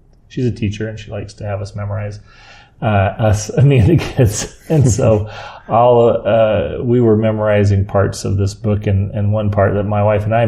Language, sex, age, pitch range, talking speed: English, male, 30-49, 105-115 Hz, 200 wpm